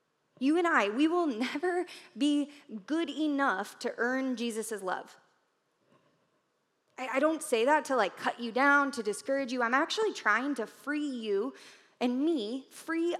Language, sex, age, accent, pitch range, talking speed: English, female, 20-39, American, 215-280 Hz, 160 wpm